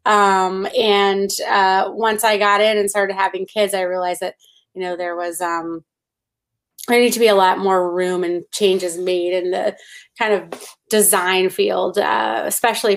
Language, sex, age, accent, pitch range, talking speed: English, female, 30-49, American, 185-220 Hz, 175 wpm